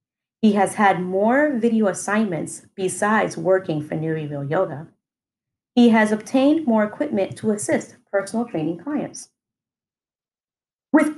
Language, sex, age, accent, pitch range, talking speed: English, female, 30-49, American, 185-250 Hz, 125 wpm